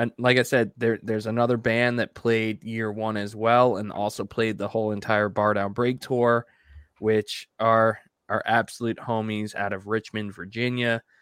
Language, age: English, 20-39